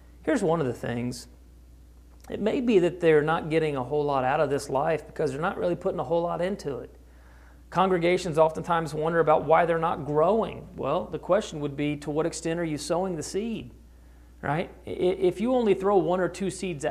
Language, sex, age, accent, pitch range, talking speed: English, male, 40-59, American, 135-185 Hz, 210 wpm